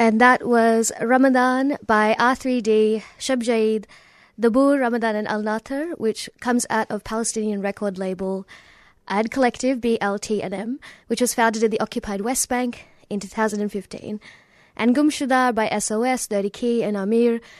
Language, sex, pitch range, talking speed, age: English, female, 210-245 Hz, 130 wpm, 20-39